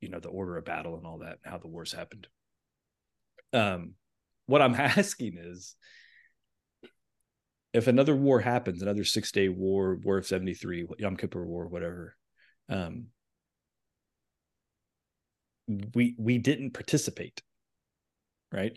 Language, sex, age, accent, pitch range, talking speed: English, male, 30-49, American, 95-120 Hz, 120 wpm